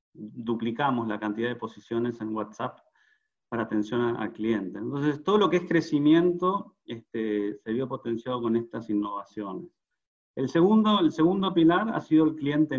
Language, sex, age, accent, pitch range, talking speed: English, male, 30-49, Argentinian, 115-145 Hz, 155 wpm